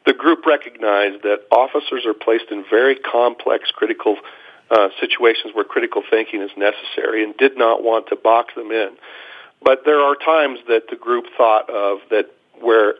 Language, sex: English, male